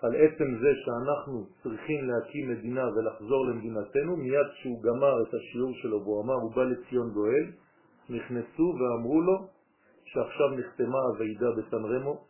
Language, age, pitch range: French, 50-69, 120-155 Hz